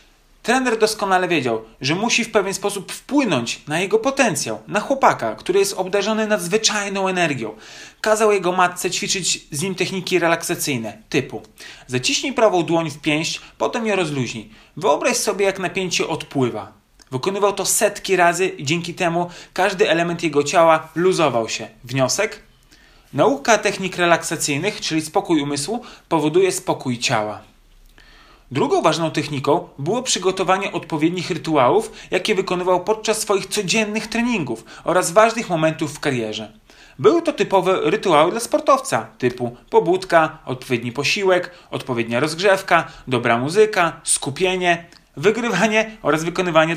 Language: Polish